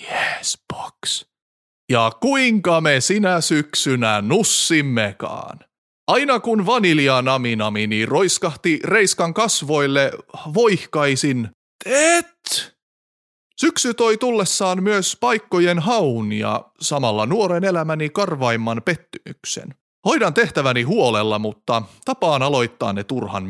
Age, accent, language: 30-49, native, Finnish